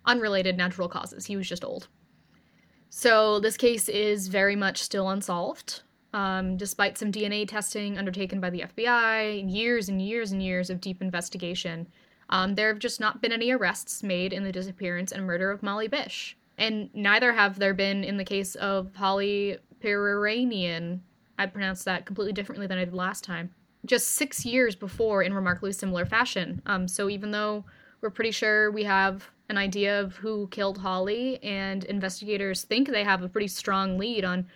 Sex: female